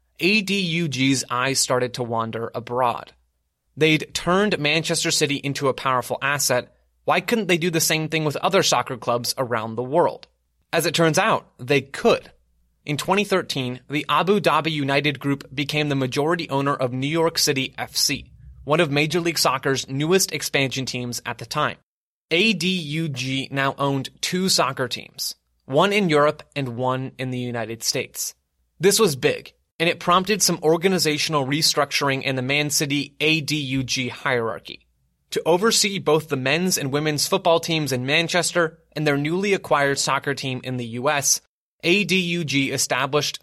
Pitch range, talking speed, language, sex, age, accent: 130-165 Hz, 155 wpm, English, male, 20-39, American